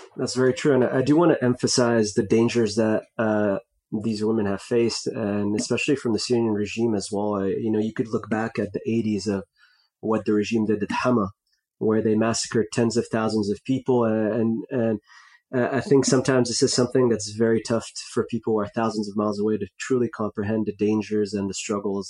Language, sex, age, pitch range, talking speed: English, male, 20-39, 105-120 Hz, 210 wpm